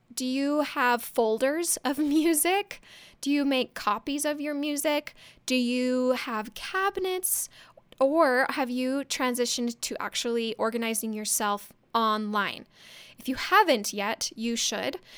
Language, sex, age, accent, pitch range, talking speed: English, female, 10-29, American, 220-285 Hz, 125 wpm